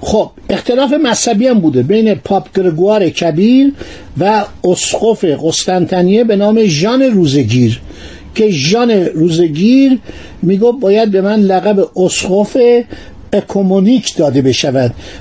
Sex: male